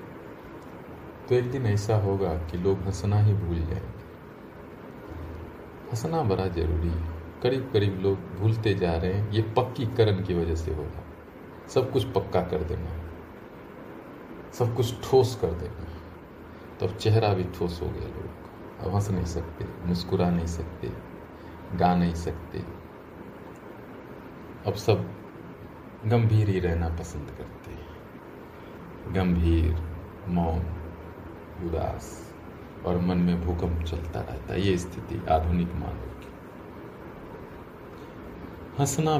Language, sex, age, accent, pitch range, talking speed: Hindi, male, 40-59, native, 85-100 Hz, 120 wpm